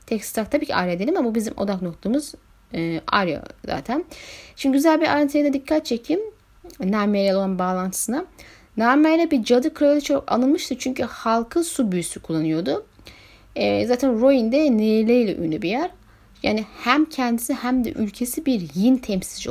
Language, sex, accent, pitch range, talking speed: Turkish, female, native, 185-265 Hz, 155 wpm